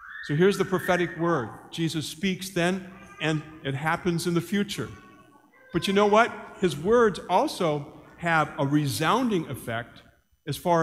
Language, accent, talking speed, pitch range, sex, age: English, American, 150 wpm, 150-195 Hz, male, 50-69